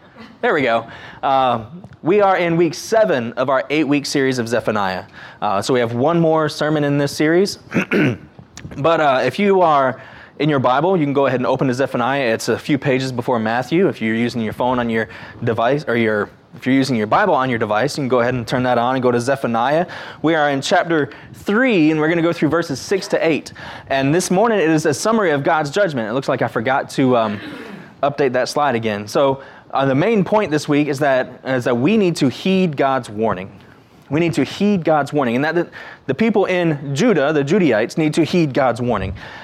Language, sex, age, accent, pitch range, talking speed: English, male, 20-39, American, 125-175 Hz, 230 wpm